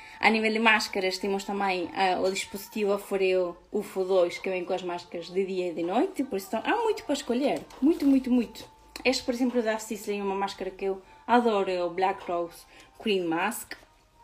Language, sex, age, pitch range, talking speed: Portuguese, female, 20-39, 190-255 Hz, 200 wpm